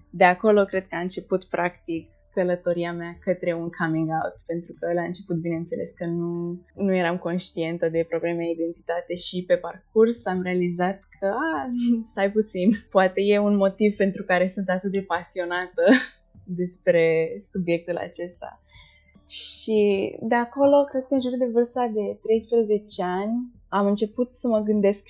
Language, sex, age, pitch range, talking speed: Romanian, female, 20-39, 175-205 Hz, 155 wpm